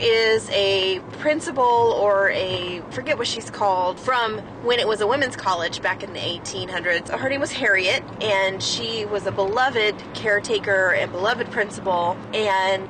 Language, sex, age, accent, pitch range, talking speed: English, female, 30-49, American, 195-260 Hz, 160 wpm